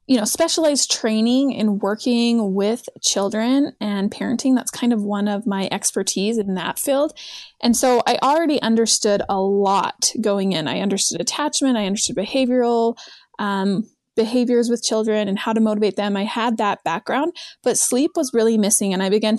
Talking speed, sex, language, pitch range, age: 175 wpm, female, English, 205-250 Hz, 20-39